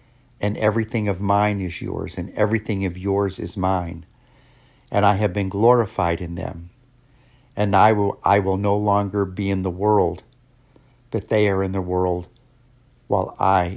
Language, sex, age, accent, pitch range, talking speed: English, male, 50-69, American, 95-125 Hz, 165 wpm